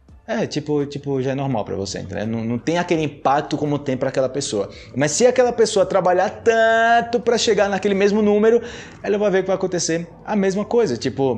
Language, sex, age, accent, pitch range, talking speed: Portuguese, male, 20-39, Brazilian, 120-155 Hz, 210 wpm